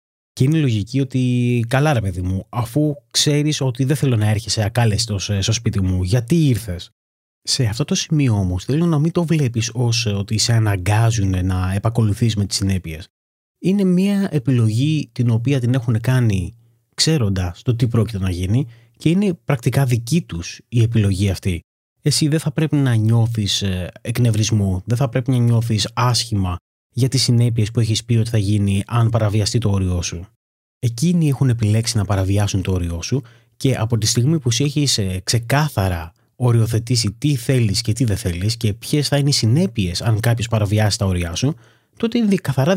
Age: 30-49